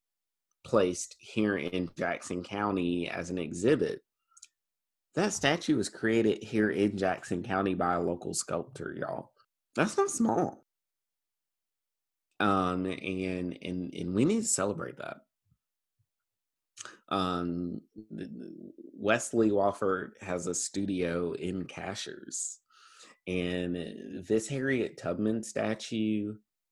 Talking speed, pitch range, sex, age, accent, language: 105 wpm, 90-110 Hz, male, 30-49, American, English